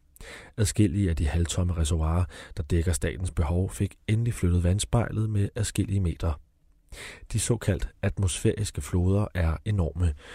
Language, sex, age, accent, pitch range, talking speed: Danish, male, 30-49, native, 80-100 Hz, 130 wpm